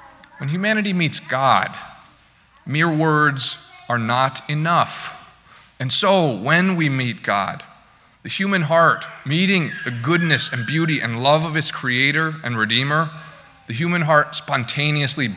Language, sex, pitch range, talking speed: English, male, 115-150 Hz, 135 wpm